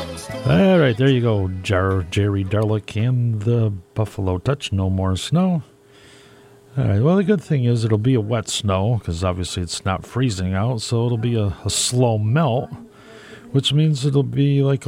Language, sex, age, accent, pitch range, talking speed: English, male, 40-59, American, 100-130 Hz, 180 wpm